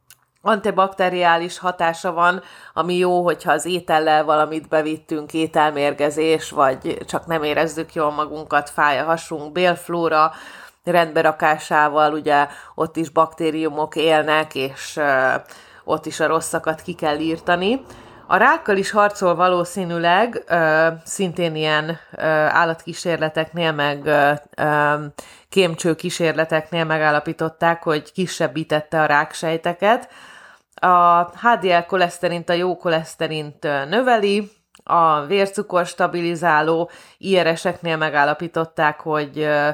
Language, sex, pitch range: Hungarian, female, 150-175 Hz